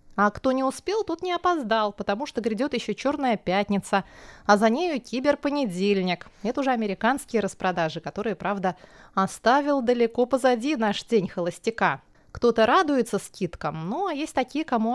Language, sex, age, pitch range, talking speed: Russian, female, 20-39, 180-240 Hz, 145 wpm